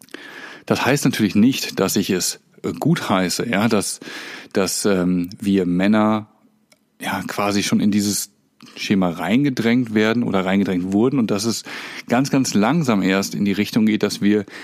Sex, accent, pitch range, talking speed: male, German, 100-115 Hz, 160 wpm